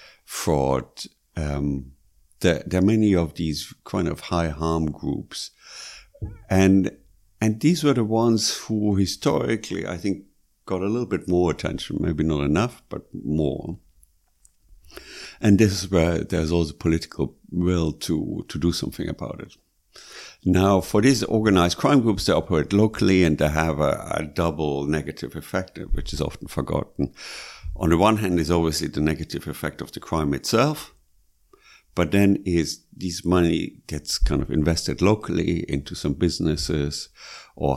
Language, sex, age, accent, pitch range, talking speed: Danish, male, 60-79, German, 75-95 Hz, 155 wpm